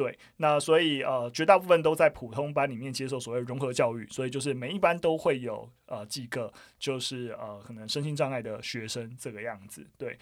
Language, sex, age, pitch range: Chinese, male, 20-39, 120-155 Hz